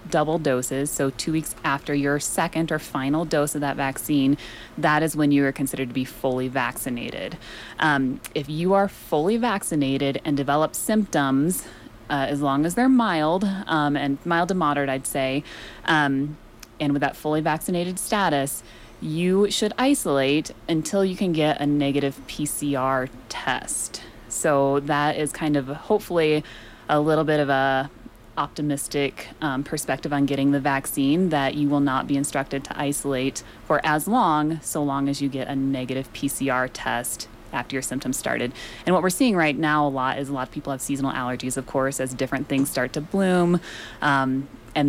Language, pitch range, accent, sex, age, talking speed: English, 135-155 Hz, American, female, 30-49, 175 wpm